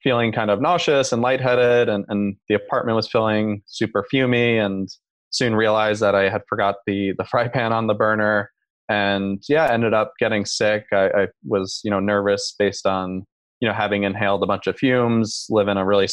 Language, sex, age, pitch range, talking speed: English, male, 20-39, 95-110 Hz, 200 wpm